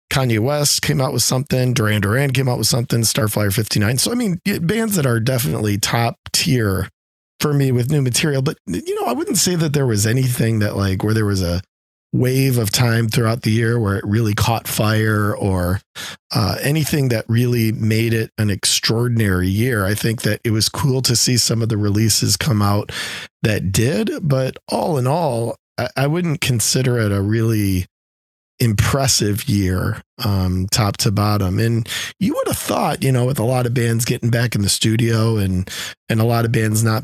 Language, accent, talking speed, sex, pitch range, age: English, American, 200 wpm, male, 100-125 Hz, 40-59